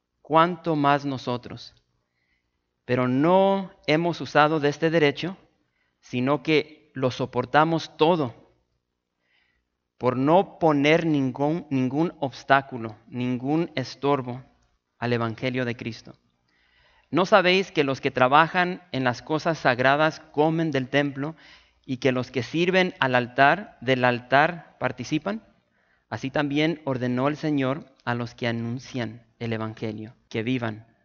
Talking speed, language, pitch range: 120 wpm, English, 115-155 Hz